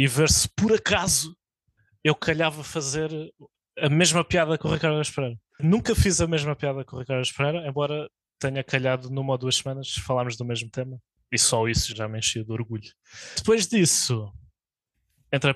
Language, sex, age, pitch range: Portuguese, male, 20-39, 115-150 Hz